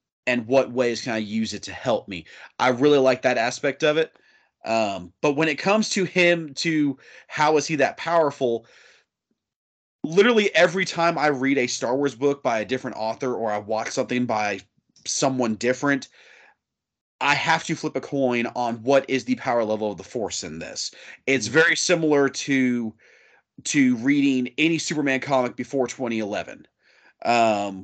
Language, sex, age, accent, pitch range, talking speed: English, male, 30-49, American, 120-145 Hz, 170 wpm